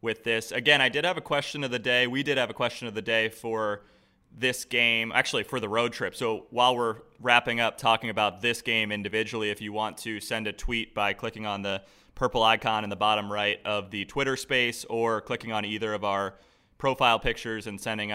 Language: English